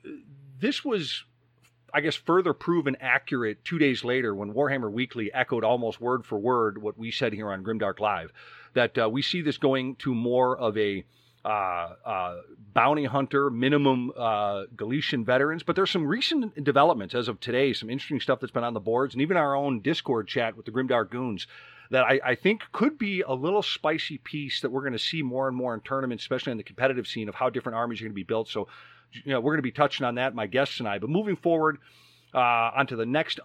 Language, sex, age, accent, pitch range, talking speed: English, male, 40-59, American, 115-140 Hz, 220 wpm